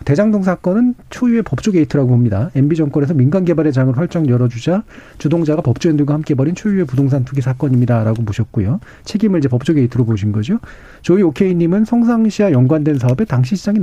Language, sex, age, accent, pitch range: Korean, male, 40-59, native, 125-185 Hz